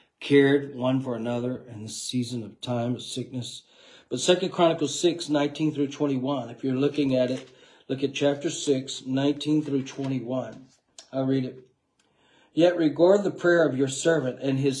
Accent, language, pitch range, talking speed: American, English, 125-145 Hz, 180 wpm